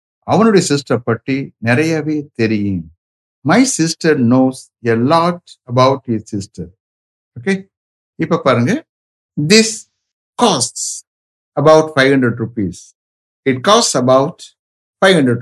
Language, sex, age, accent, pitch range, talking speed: English, male, 60-79, Indian, 100-150 Hz, 70 wpm